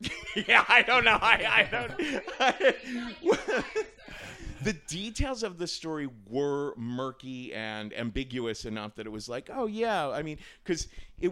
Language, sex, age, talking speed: English, male, 40-59, 145 wpm